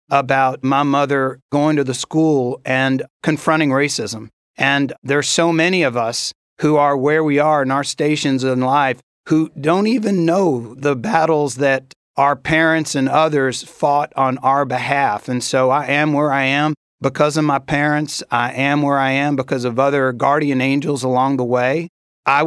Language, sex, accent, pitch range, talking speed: English, male, American, 135-155 Hz, 175 wpm